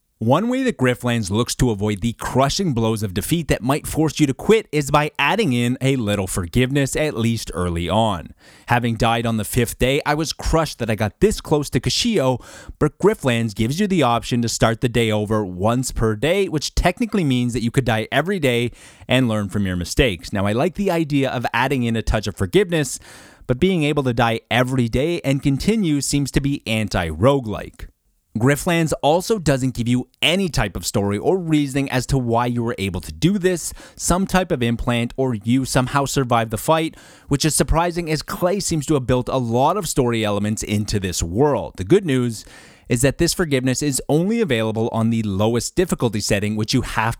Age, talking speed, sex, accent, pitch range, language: 30-49, 205 wpm, male, American, 110-150 Hz, English